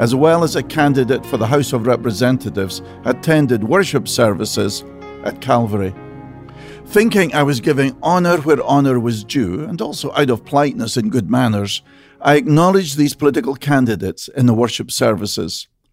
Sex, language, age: male, English, 50-69